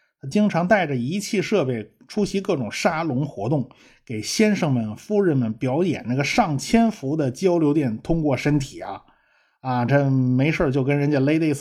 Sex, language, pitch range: male, Chinese, 125-190 Hz